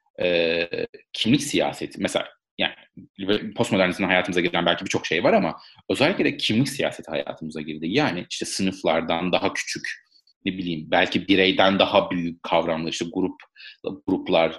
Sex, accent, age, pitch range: male, native, 40-59, 90-125 Hz